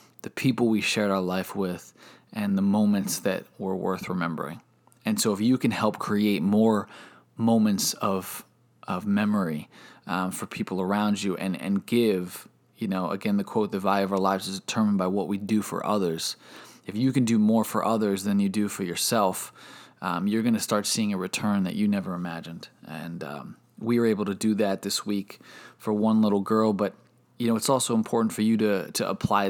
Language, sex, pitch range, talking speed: English, male, 100-120 Hz, 205 wpm